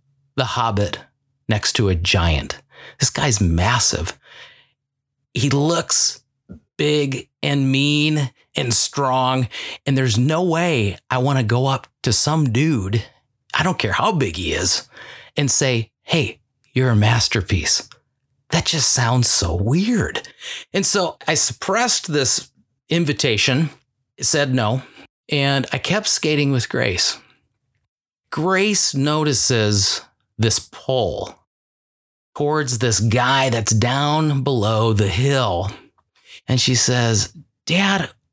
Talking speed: 120 wpm